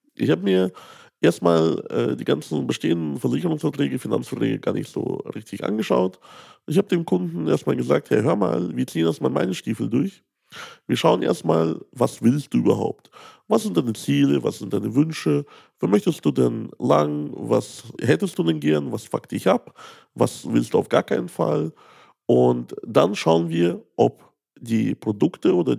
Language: German